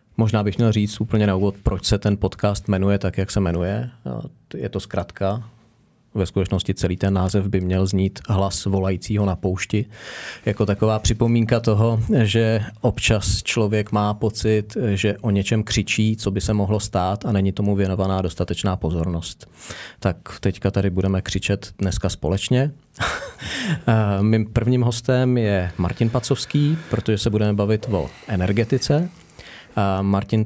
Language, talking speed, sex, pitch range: Czech, 150 wpm, male, 100-115 Hz